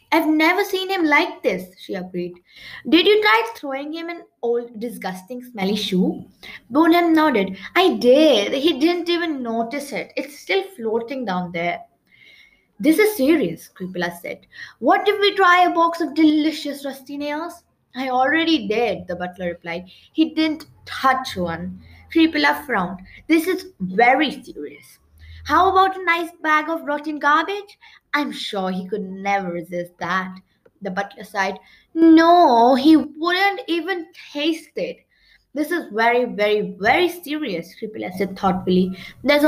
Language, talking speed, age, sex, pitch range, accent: English, 145 wpm, 20-39, female, 200-320 Hz, Indian